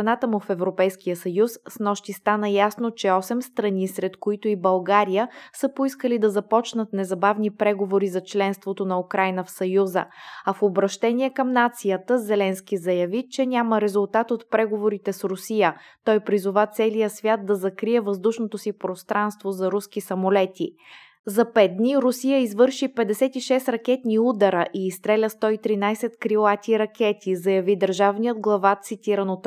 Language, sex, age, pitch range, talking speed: Bulgarian, female, 20-39, 195-230 Hz, 145 wpm